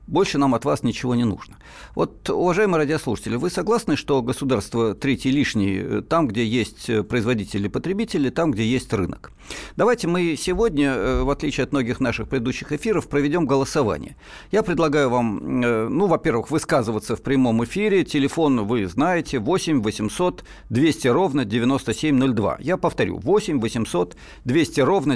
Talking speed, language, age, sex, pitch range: 145 wpm, Russian, 50-69, male, 115-160 Hz